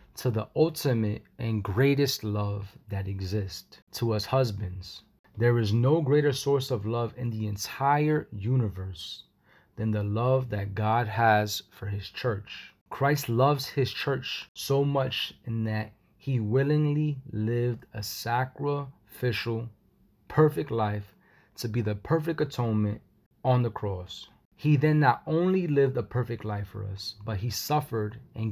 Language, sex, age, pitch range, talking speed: English, male, 30-49, 105-130 Hz, 145 wpm